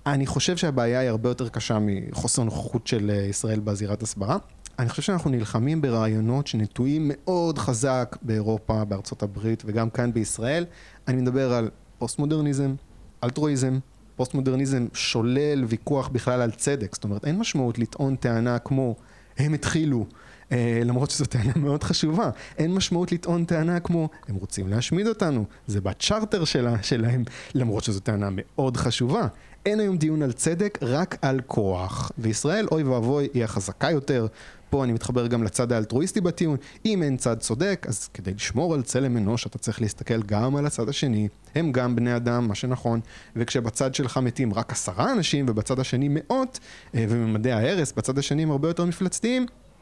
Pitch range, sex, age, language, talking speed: 115-150 Hz, male, 30-49, Hebrew, 155 wpm